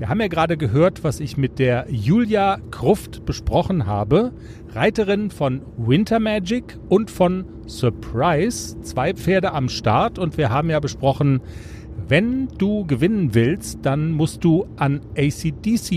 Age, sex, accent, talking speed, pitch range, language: 40-59, male, German, 145 wpm, 120-185 Hz, German